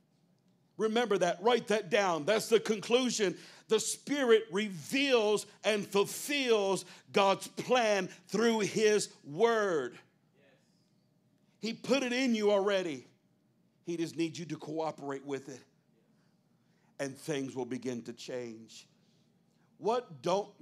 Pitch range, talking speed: 165-220 Hz, 115 wpm